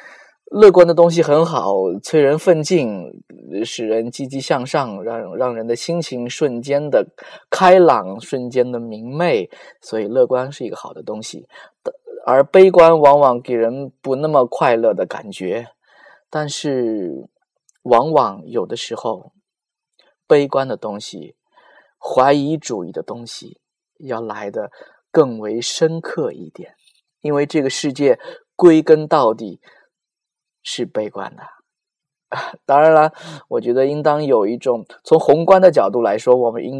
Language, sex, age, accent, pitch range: Chinese, male, 20-39, native, 120-180 Hz